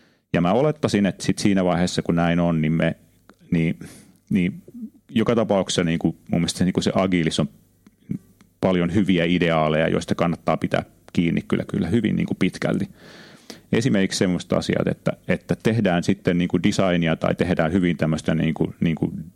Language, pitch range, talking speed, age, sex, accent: Finnish, 80-95 Hz, 185 wpm, 30-49, male, native